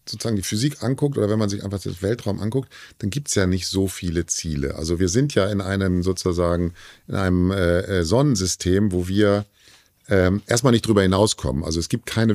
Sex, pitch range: male, 95-115 Hz